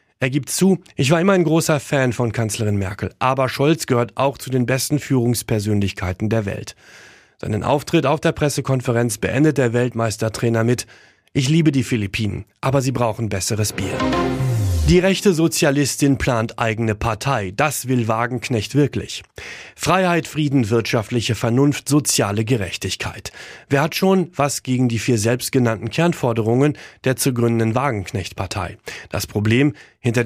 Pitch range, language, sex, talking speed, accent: 115-145 Hz, German, male, 145 wpm, German